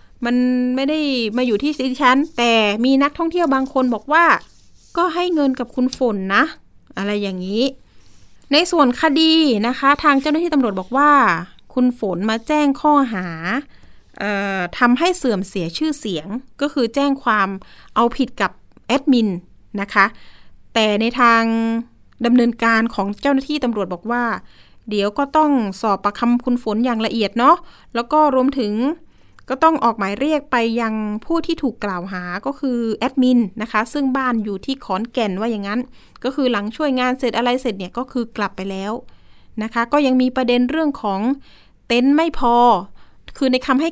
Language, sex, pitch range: Thai, female, 215-270 Hz